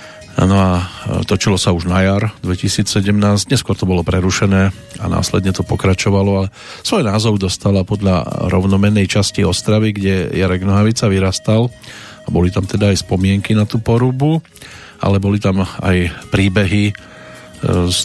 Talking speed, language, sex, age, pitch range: 140 wpm, Slovak, male, 40-59, 95-115 Hz